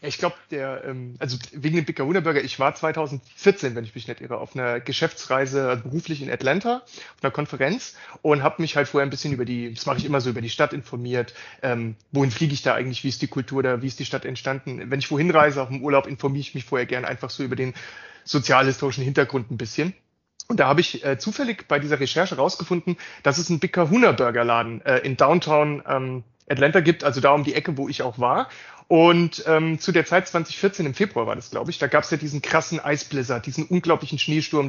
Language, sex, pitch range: German, male, 135-175 Hz